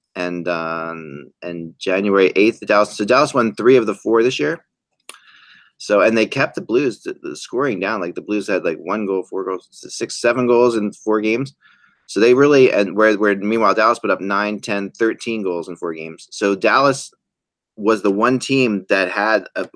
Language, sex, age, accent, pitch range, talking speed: English, male, 30-49, American, 95-115 Hz, 200 wpm